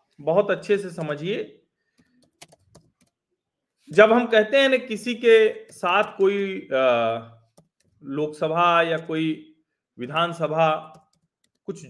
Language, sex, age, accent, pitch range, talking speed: Hindi, male, 40-59, native, 155-225 Hz, 90 wpm